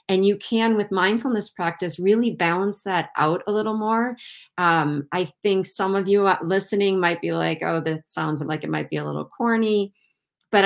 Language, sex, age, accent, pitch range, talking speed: English, female, 40-59, American, 160-200 Hz, 190 wpm